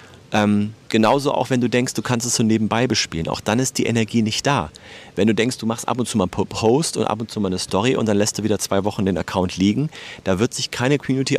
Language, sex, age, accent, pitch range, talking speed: German, male, 40-59, German, 105-140 Hz, 270 wpm